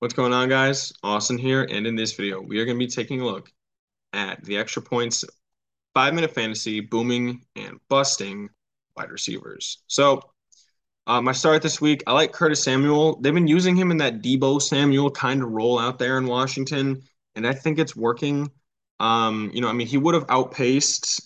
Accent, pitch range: American, 105-130 Hz